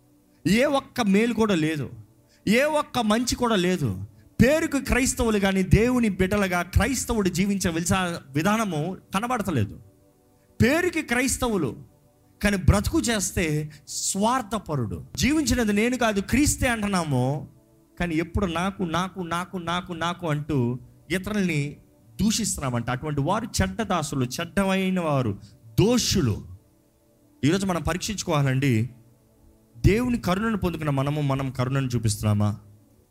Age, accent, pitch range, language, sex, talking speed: 30-49, native, 130-210 Hz, Telugu, male, 100 wpm